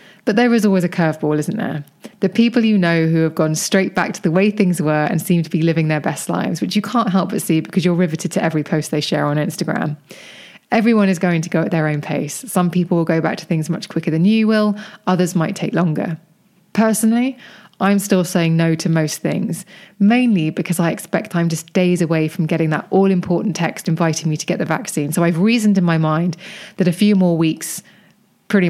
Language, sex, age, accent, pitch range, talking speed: English, female, 20-39, British, 165-205 Hz, 230 wpm